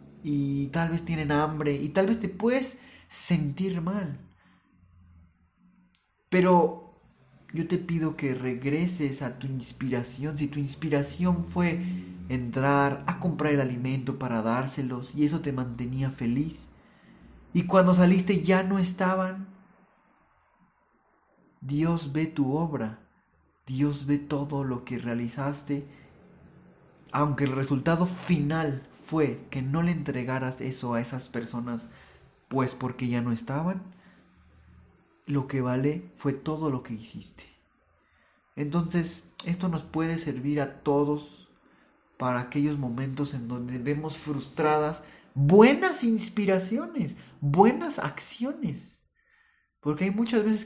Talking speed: 120 wpm